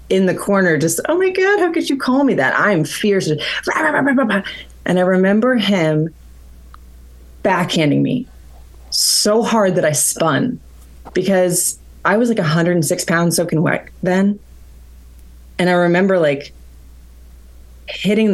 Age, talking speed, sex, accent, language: 30-49, 135 wpm, female, American, English